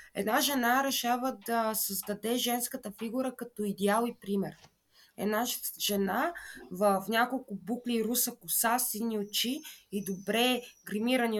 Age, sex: 20-39, female